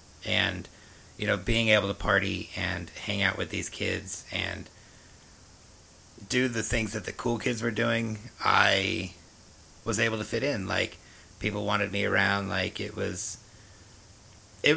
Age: 30-49